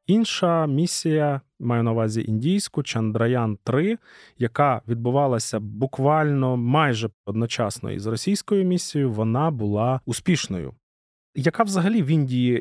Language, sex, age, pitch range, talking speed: English, male, 30-49, 110-140 Hz, 105 wpm